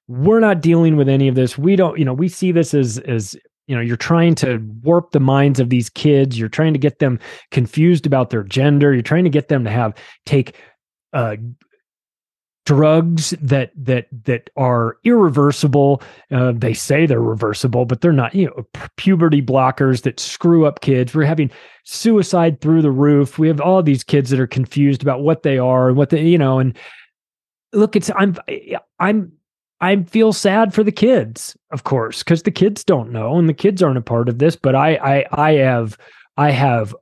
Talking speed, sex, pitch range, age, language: 200 wpm, male, 130-170 Hz, 30-49, English